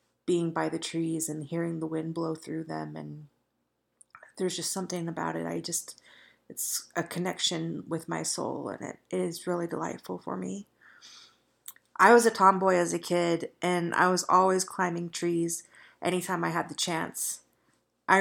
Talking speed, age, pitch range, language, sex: 170 wpm, 30-49, 165-190 Hz, English, female